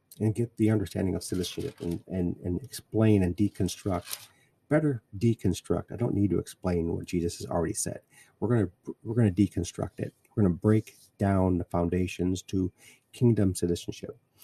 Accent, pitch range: American, 95-120 Hz